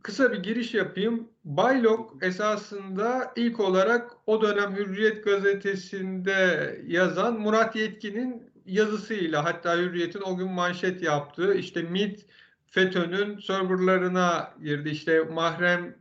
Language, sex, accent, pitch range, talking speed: Turkish, male, native, 160-200 Hz, 110 wpm